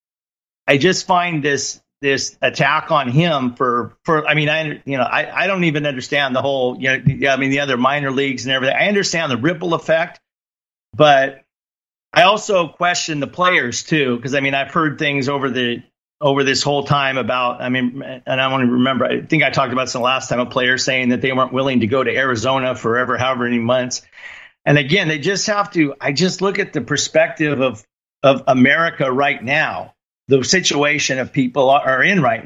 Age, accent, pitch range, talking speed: 40-59, American, 130-160 Hz, 205 wpm